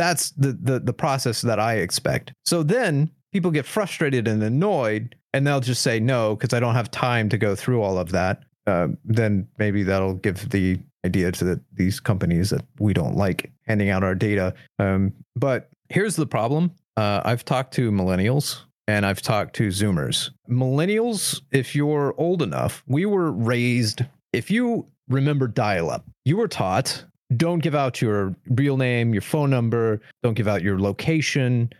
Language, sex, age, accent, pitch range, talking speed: English, male, 30-49, American, 110-155 Hz, 180 wpm